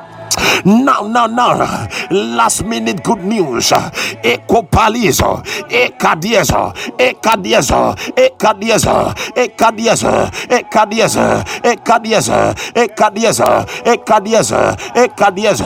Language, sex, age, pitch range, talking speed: English, male, 60-79, 215-245 Hz, 60 wpm